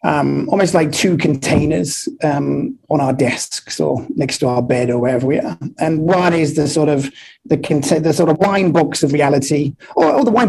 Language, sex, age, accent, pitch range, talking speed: English, male, 30-49, British, 135-170 Hz, 210 wpm